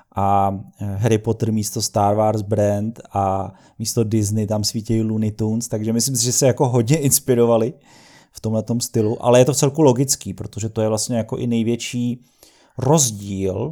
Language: Czech